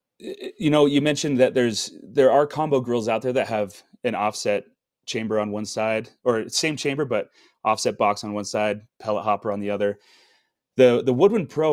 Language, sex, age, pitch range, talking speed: English, male, 30-49, 105-135 Hz, 195 wpm